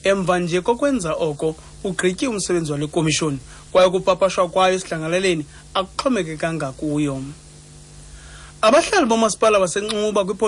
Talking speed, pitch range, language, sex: 120 wpm, 165-195 Hz, English, male